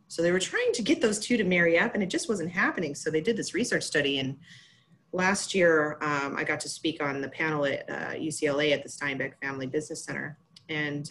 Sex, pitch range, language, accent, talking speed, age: female, 145-175 Hz, English, American, 230 wpm, 30-49